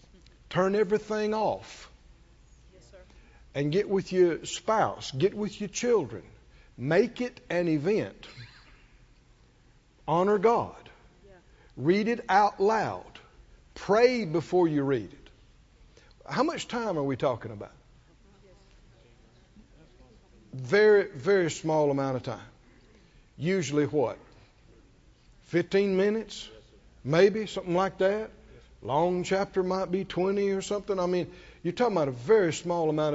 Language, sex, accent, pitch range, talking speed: English, male, American, 135-195 Hz, 115 wpm